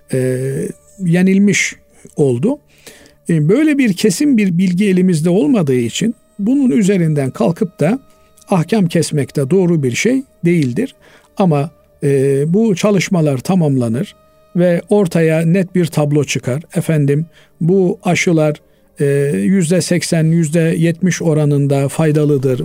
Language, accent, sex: Turkish, native, male